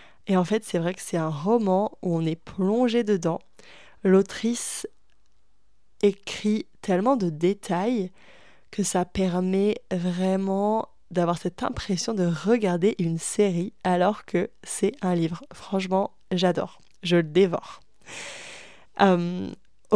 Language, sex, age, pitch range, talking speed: French, female, 20-39, 180-220 Hz, 125 wpm